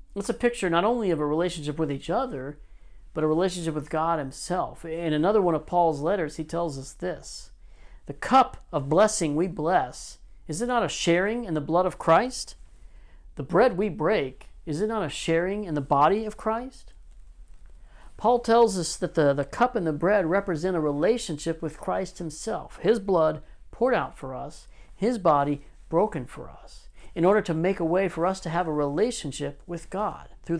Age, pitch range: 50-69, 155-210 Hz